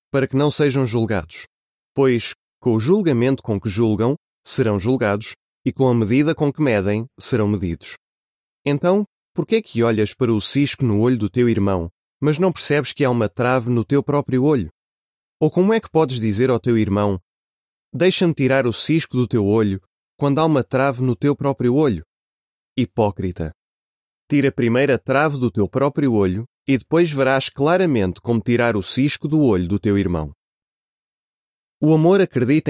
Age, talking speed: 20-39, 175 wpm